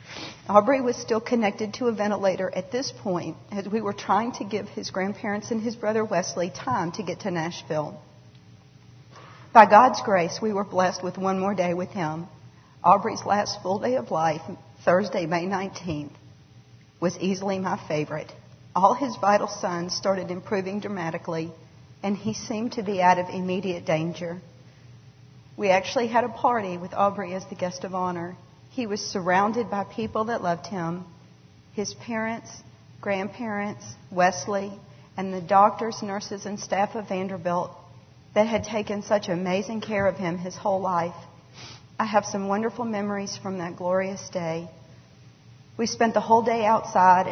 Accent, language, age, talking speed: American, English, 50-69, 160 wpm